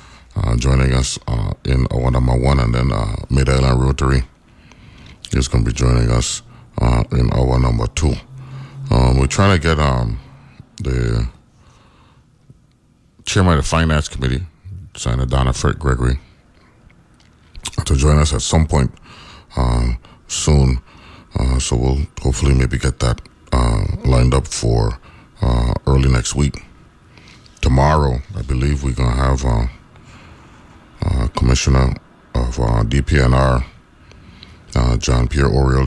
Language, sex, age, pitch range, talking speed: English, male, 30-49, 65-80 Hz, 135 wpm